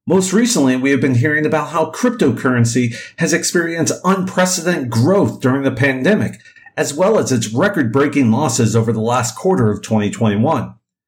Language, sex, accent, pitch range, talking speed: English, male, American, 110-155 Hz, 150 wpm